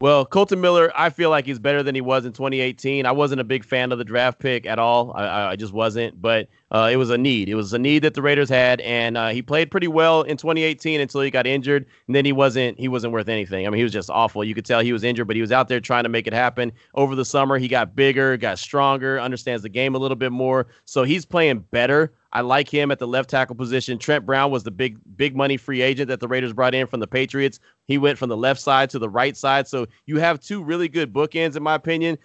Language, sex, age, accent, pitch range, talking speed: English, male, 30-49, American, 120-140 Hz, 275 wpm